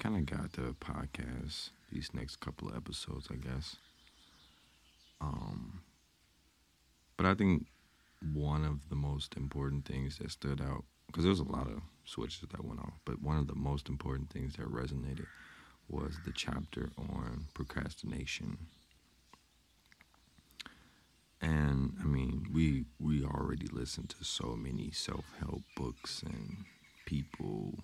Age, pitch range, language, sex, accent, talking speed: 40-59, 70-80 Hz, English, male, American, 140 wpm